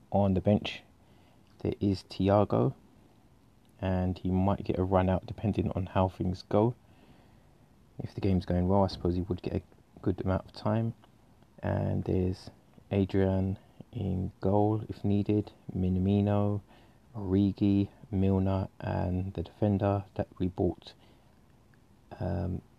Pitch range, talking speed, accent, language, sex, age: 90-105 Hz, 130 wpm, British, English, male, 20-39